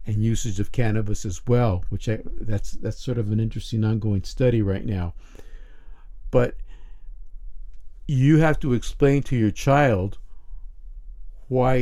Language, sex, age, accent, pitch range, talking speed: English, male, 50-69, American, 100-130 Hz, 135 wpm